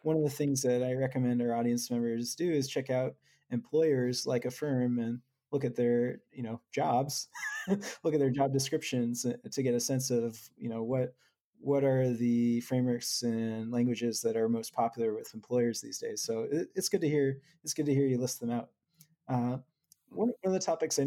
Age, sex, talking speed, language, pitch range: 20-39, male, 205 wpm, English, 120-135 Hz